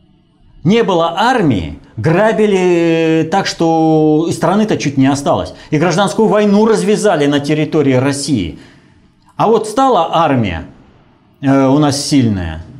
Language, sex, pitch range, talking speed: Russian, male, 130-190 Hz, 115 wpm